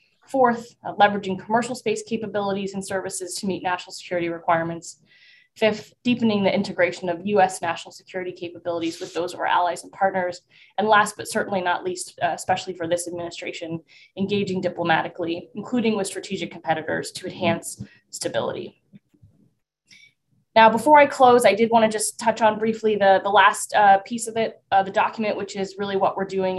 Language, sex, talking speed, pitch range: English, female, 170 wpm, 175-210 Hz